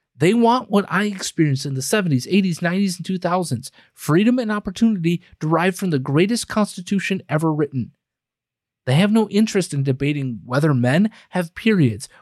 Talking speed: 155 wpm